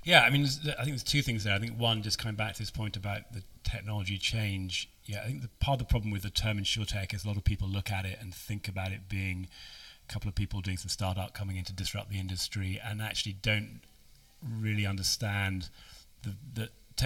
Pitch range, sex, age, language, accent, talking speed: 95-110 Hz, male, 30-49, English, British, 230 wpm